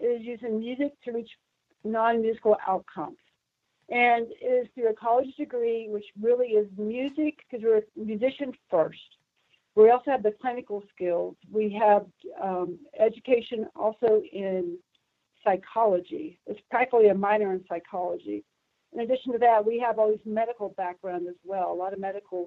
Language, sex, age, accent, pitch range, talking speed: English, female, 60-79, American, 190-240 Hz, 155 wpm